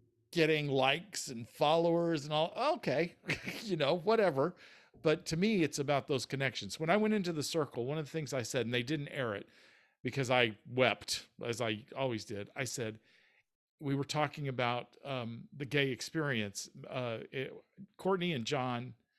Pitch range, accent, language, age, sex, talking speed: 125-160 Hz, American, English, 50-69, male, 170 wpm